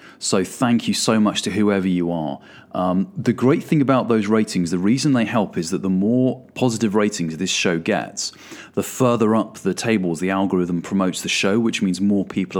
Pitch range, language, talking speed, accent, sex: 95-115 Hz, English, 205 wpm, British, male